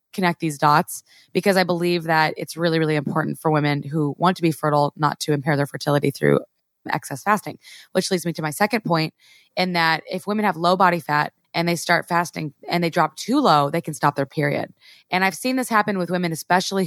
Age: 20-39